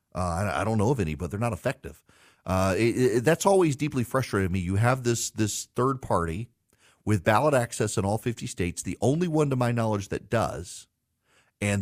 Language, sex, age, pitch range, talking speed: English, male, 40-59, 95-120 Hz, 205 wpm